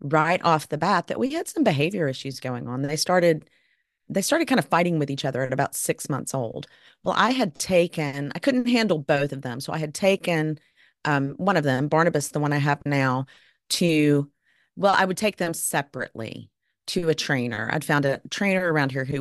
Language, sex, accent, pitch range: English, female, American, 135-170 Hz